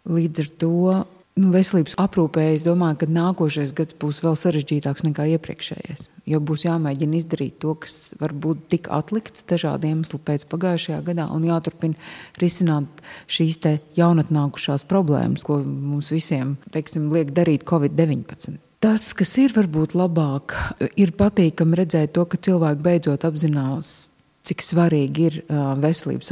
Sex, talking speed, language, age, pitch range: female, 140 wpm, English, 30-49, 150-175 Hz